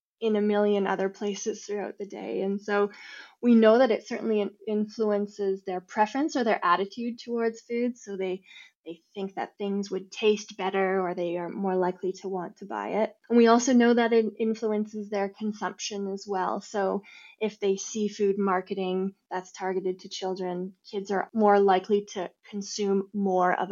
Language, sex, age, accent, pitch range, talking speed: English, female, 10-29, American, 195-240 Hz, 180 wpm